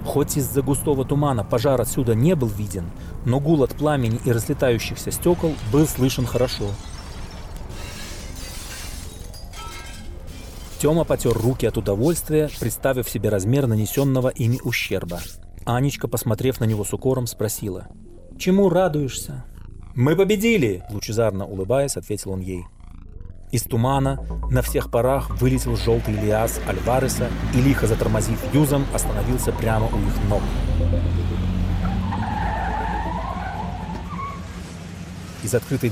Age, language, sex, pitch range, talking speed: 30-49, Russian, male, 95-135 Hz, 110 wpm